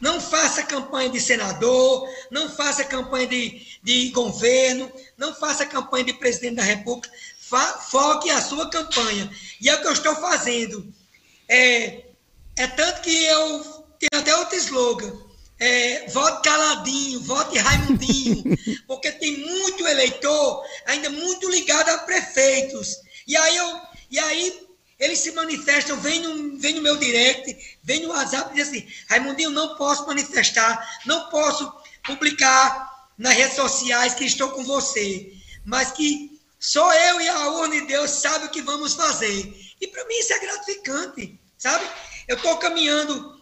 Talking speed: 150 wpm